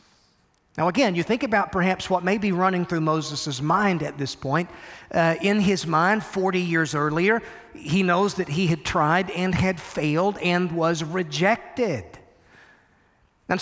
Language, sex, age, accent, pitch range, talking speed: English, male, 40-59, American, 160-205 Hz, 160 wpm